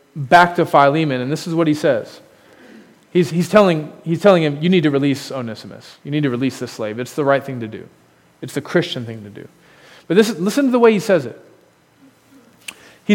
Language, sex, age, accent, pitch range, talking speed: English, male, 40-59, American, 155-230 Hz, 220 wpm